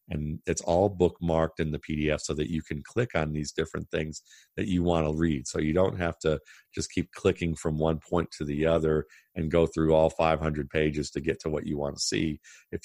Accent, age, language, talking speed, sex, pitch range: American, 50-69, English, 235 wpm, male, 75-85 Hz